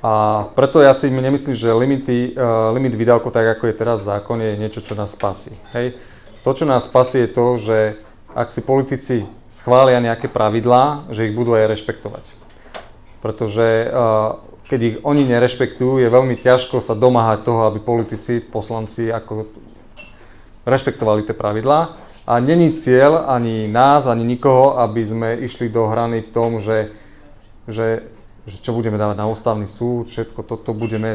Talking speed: 165 wpm